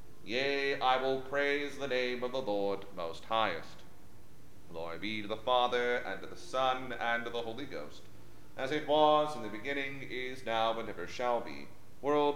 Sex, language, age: male, English, 40-59